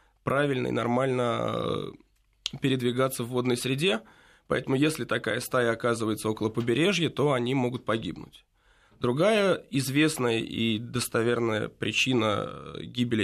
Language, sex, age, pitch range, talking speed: Russian, male, 20-39, 115-145 Hz, 110 wpm